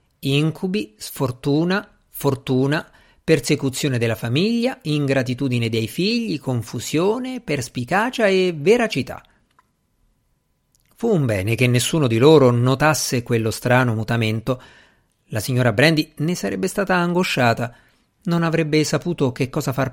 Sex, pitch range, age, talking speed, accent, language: male, 115-155 Hz, 50-69, 110 wpm, native, Italian